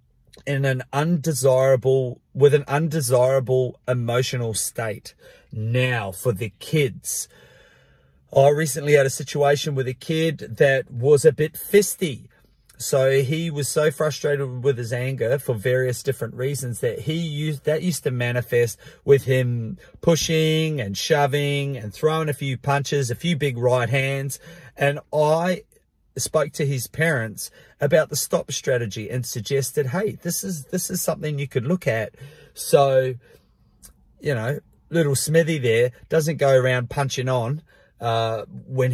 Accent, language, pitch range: Australian, English, 125-155 Hz